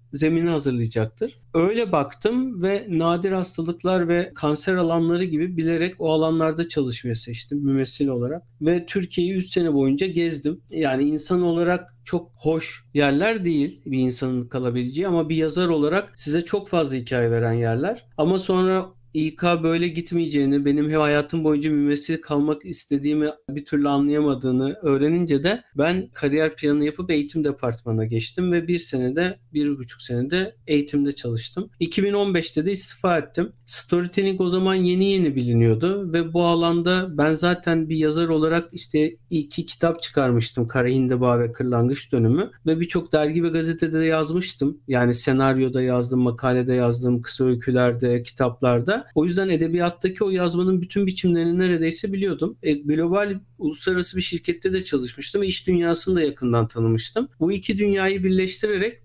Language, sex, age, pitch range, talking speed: Turkish, male, 50-69, 135-180 Hz, 145 wpm